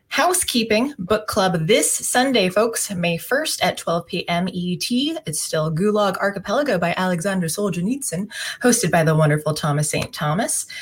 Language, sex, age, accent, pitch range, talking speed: English, female, 20-39, American, 155-205 Hz, 145 wpm